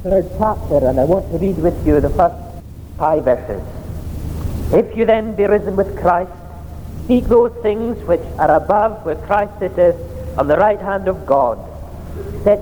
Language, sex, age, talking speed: English, male, 50-69, 170 wpm